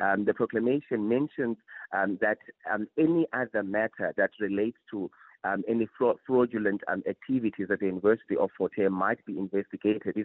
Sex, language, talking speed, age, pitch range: male, English, 160 wpm, 30-49, 100-120 Hz